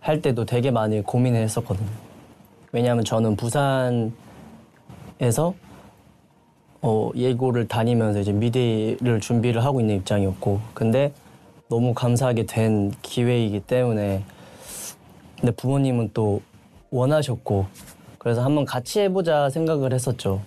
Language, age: Korean, 20-39